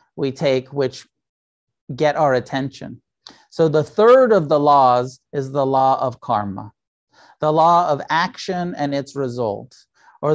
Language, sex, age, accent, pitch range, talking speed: English, male, 40-59, American, 130-165 Hz, 145 wpm